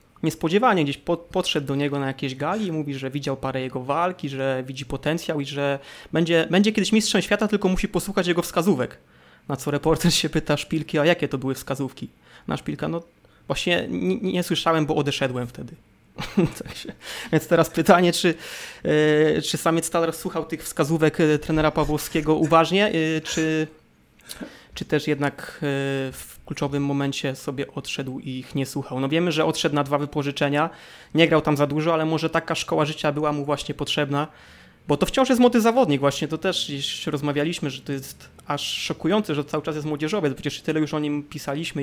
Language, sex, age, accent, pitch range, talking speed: Polish, male, 20-39, native, 145-170 Hz, 180 wpm